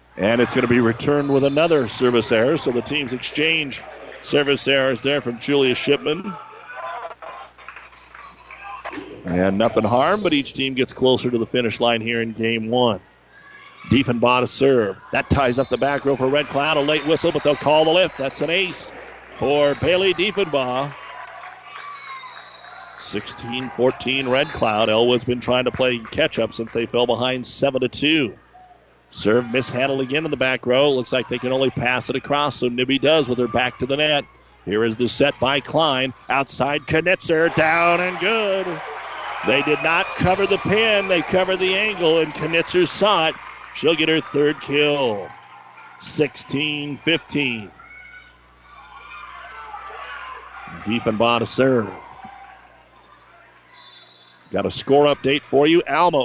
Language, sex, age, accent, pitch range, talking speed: English, male, 50-69, American, 125-155 Hz, 150 wpm